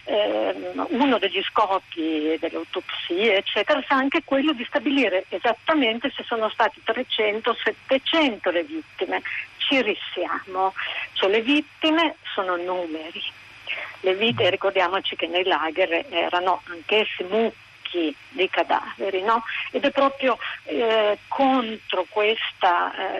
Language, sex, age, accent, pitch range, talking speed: Italian, female, 50-69, native, 190-260 Hz, 115 wpm